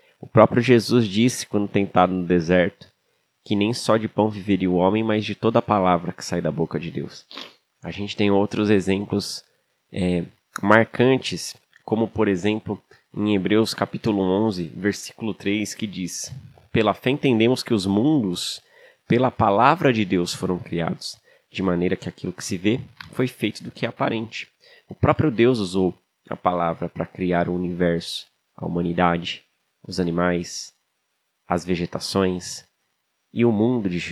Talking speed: 155 wpm